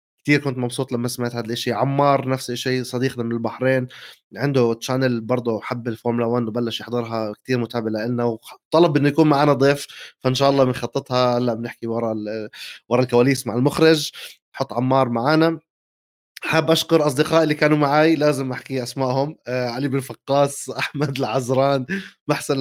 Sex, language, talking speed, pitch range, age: male, Arabic, 155 wpm, 120-145 Hz, 20-39